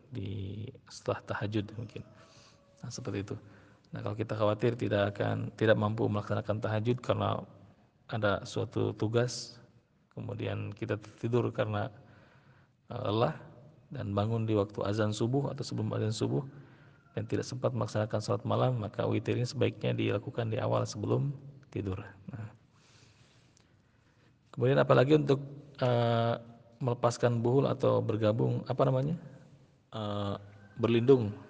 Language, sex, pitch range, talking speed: Malay, male, 110-125 Hz, 120 wpm